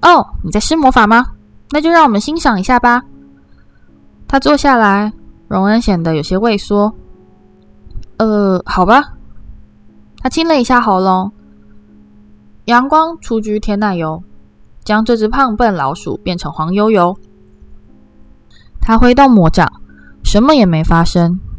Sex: female